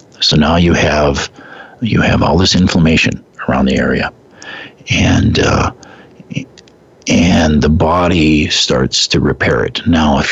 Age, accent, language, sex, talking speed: 50-69, American, English, male, 135 wpm